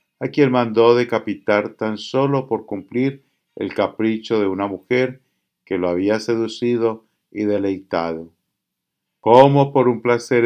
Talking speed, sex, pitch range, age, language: 130 wpm, male, 100-130 Hz, 50-69, English